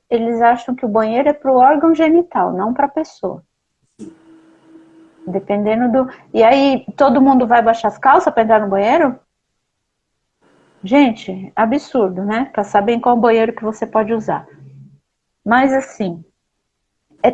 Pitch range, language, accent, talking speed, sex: 210-265 Hz, Portuguese, Brazilian, 140 wpm, female